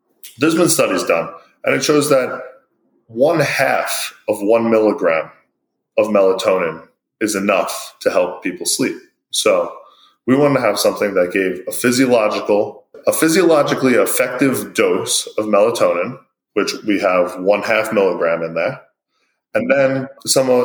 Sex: male